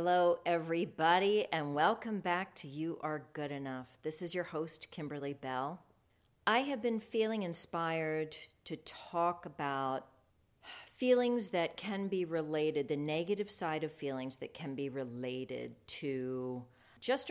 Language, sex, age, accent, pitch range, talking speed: English, female, 40-59, American, 140-175 Hz, 140 wpm